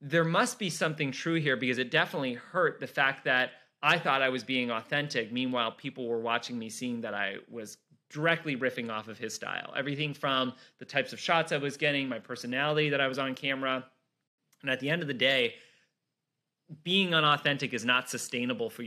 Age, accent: 30-49, American